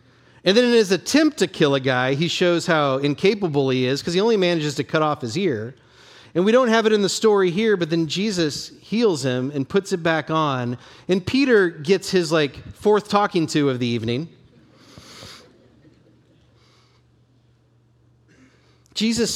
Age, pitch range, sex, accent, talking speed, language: 40-59, 120-175 Hz, male, American, 170 wpm, English